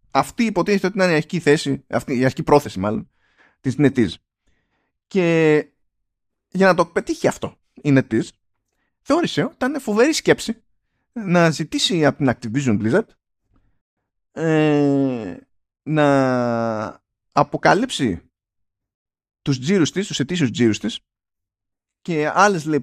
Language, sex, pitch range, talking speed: Greek, male, 120-175 Hz, 115 wpm